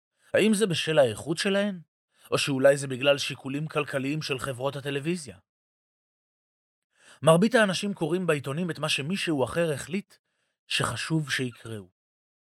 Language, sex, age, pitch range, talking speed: Hebrew, male, 30-49, 125-175 Hz, 120 wpm